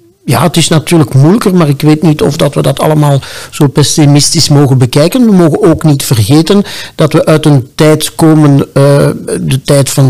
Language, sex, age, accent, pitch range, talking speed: Dutch, male, 60-79, Dutch, 130-155 Hz, 190 wpm